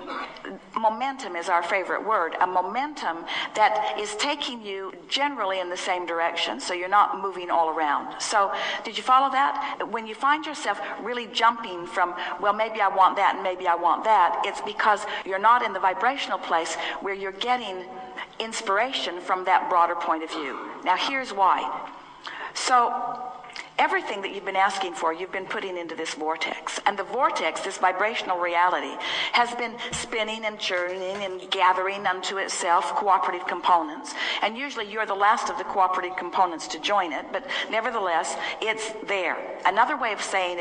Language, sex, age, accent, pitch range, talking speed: English, female, 50-69, American, 185-240 Hz, 170 wpm